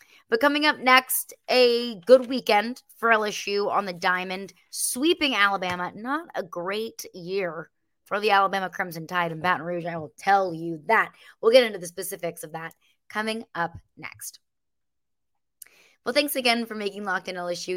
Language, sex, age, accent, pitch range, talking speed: English, female, 20-39, American, 180-230 Hz, 165 wpm